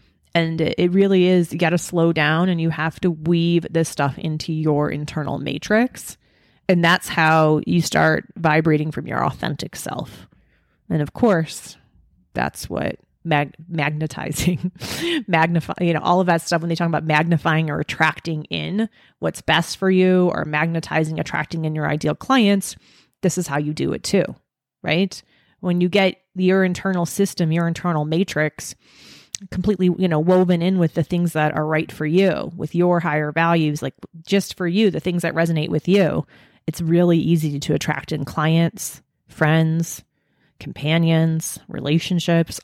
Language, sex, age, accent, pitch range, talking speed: English, female, 30-49, American, 155-180 Hz, 165 wpm